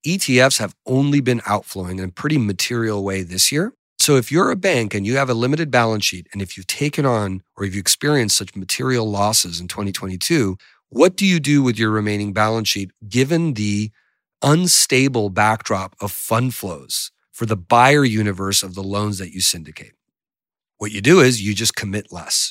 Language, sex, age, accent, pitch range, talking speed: English, male, 40-59, American, 100-125 Hz, 190 wpm